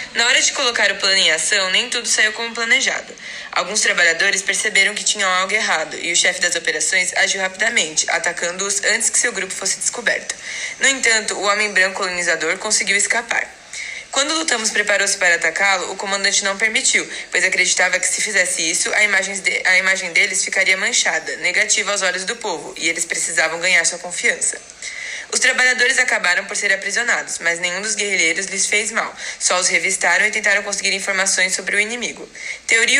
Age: 20-39